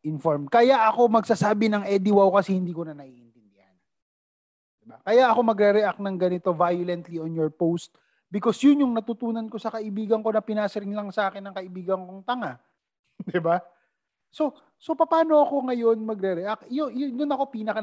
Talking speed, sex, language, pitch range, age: 170 wpm, male, Filipino, 155-220 Hz, 30-49